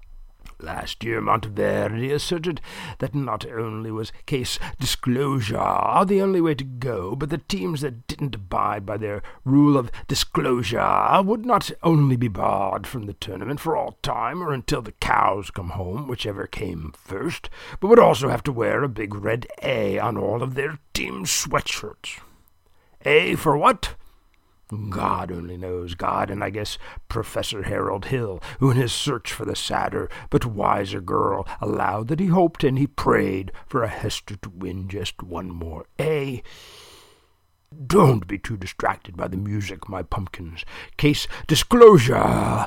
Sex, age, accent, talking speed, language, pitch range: male, 60-79, American, 160 wpm, English, 95-140 Hz